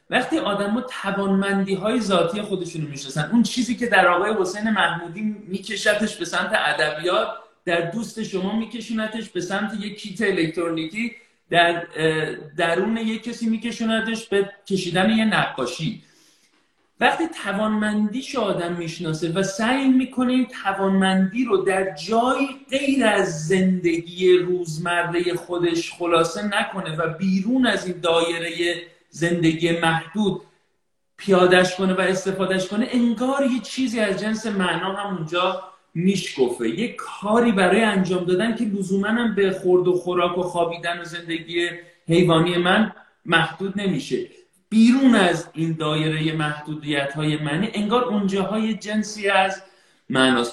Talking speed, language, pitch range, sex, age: 125 wpm, Persian, 175-220 Hz, male, 40-59